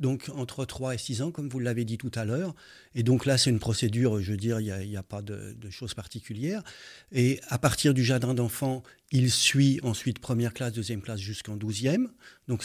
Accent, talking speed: French, 225 wpm